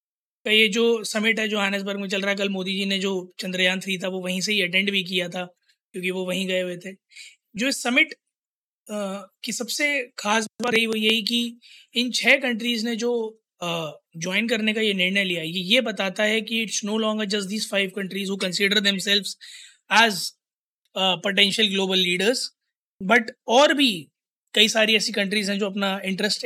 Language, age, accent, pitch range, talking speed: Hindi, 20-39, native, 185-220 Hz, 195 wpm